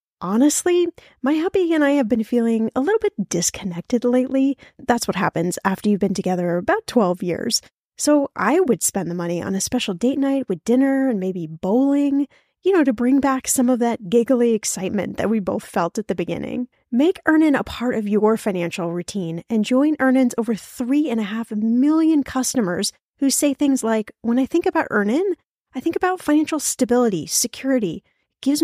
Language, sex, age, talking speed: English, female, 10-29, 190 wpm